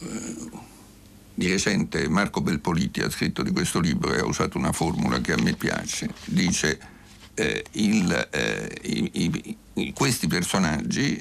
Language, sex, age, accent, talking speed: Italian, male, 60-79, native, 125 wpm